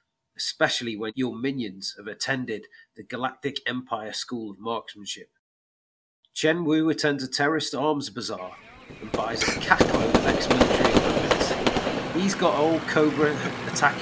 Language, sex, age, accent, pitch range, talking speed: English, male, 30-49, British, 110-155 Hz, 140 wpm